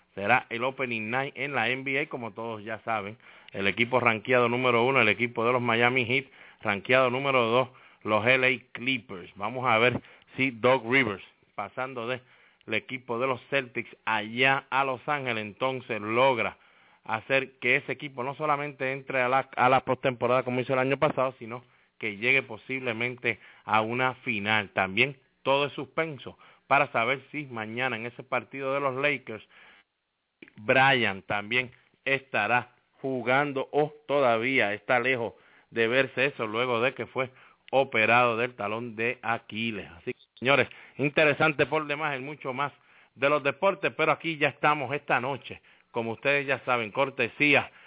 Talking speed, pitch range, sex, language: 160 wpm, 115-140 Hz, male, English